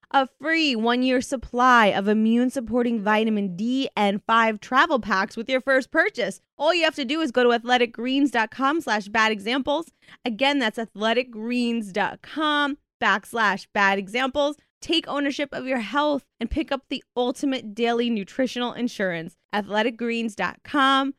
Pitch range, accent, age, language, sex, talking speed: 195-255 Hz, American, 20-39, English, female, 135 wpm